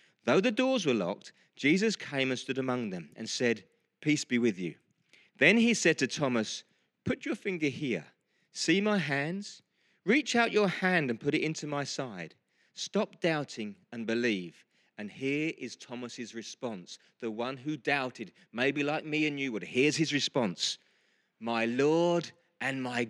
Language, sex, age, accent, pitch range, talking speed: English, male, 40-59, British, 130-200 Hz, 170 wpm